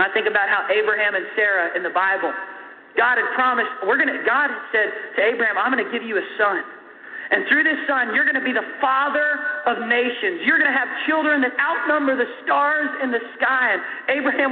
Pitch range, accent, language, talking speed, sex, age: 235-285 Hz, American, English, 220 wpm, male, 40-59